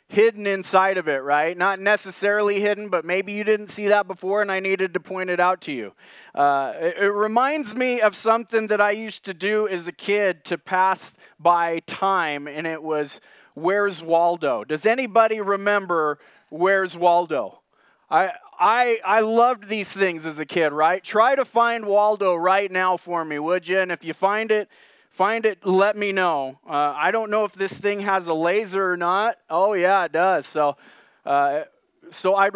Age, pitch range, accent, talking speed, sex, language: 20-39, 175-220 Hz, American, 190 wpm, male, English